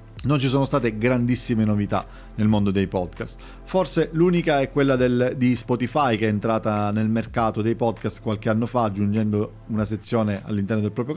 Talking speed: 170 wpm